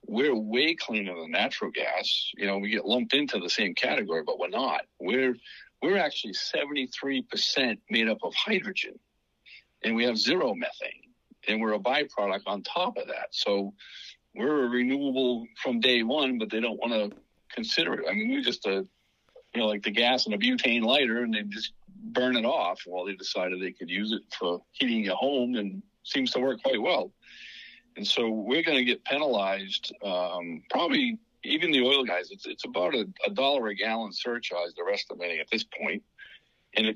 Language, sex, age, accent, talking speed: English, male, 50-69, American, 200 wpm